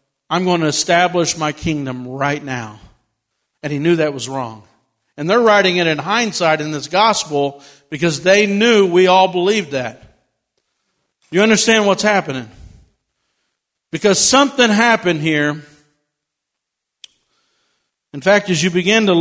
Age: 50-69